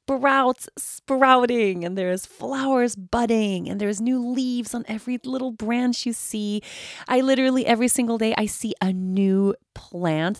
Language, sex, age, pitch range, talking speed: English, female, 30-49, 165-235 Hz, 150 wpm